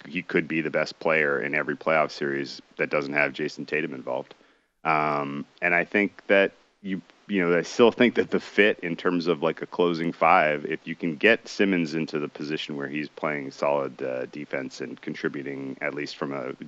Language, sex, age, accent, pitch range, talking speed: English, male, 30-49, American, 75-85 Hz, 210 wpm